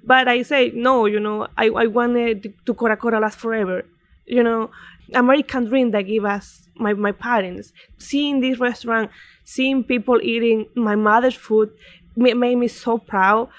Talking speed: 165 wpm